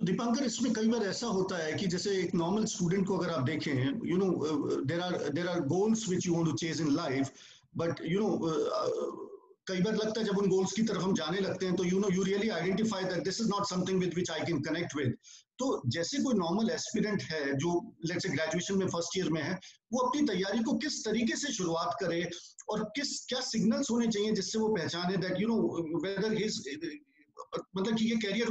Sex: male